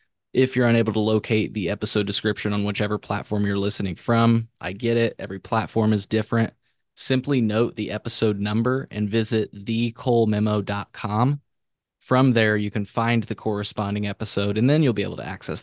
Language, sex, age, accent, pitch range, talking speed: English, male, 20-39, American, 105-115 Hz, 170 wpm